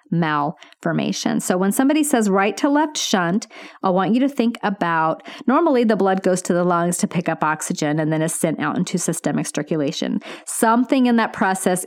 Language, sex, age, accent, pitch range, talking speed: English, female, 40-59, American, 165-225 Hz, 190 wpm